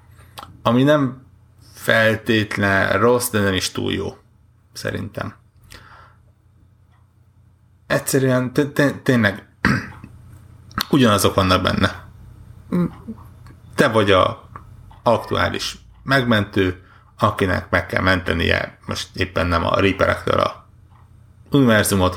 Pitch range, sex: 95-110 Hz, male